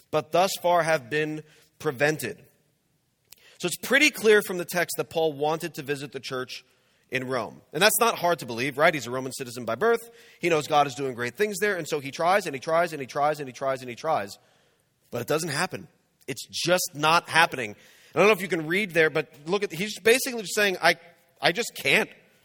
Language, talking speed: English, 225 wpm